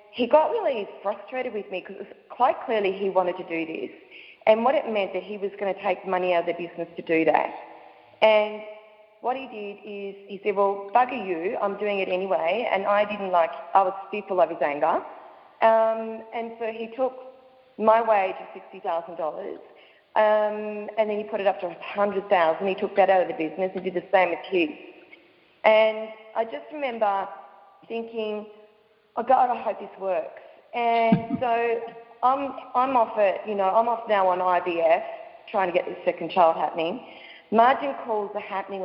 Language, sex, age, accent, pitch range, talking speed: English, female, 30-49, Australian, 190-230 Hz, 185 wpm